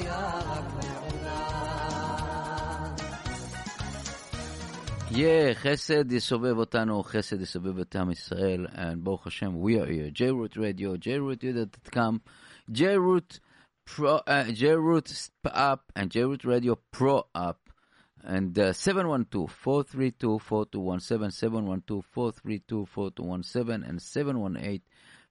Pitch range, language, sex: 95-135 Hz, English, male